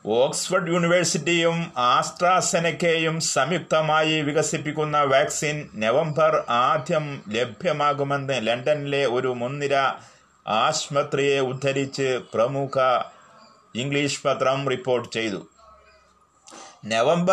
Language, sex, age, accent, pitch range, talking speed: Malayalam, male, 30-49, native, 135-165 Hz, 70 wpm